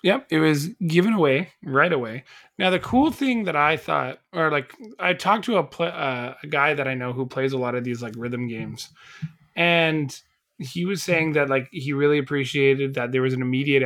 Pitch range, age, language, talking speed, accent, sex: 130-160 Hz, 20-39, English, 215 wpm, American, male